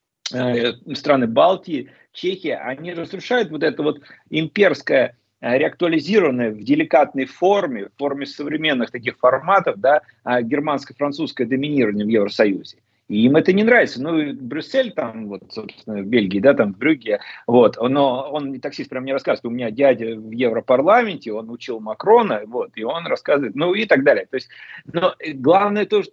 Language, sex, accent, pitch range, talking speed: Russian, male, native, 125-175 Hz, 155 wpm